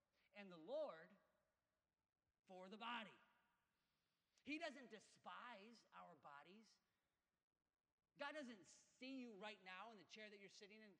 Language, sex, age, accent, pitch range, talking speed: English, male, 40-59, American, 190-250 Hz, 130 wpm